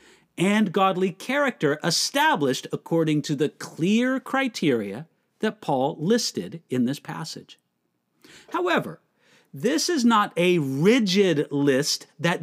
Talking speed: 110 wpm